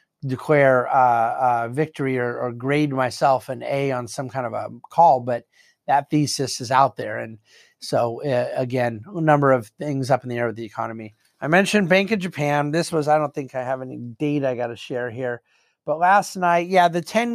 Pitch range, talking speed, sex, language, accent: 130-160 Hz, 220 wpm, male, English, American